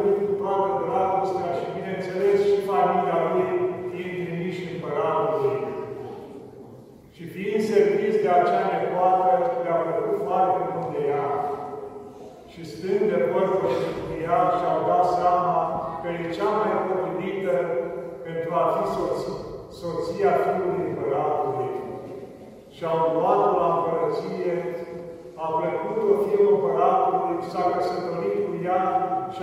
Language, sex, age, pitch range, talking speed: Romanian, male, 50-69, 175-205 Hz, 120 wpm